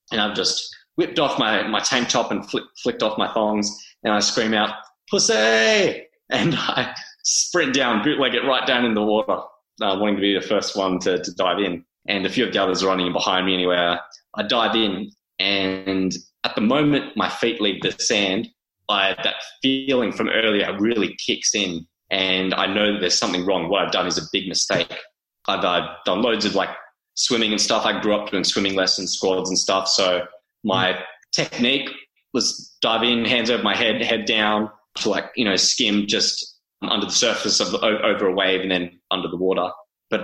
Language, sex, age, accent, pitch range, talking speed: English, male, 20-39, Australian, 95-110 Hz, 200 wpm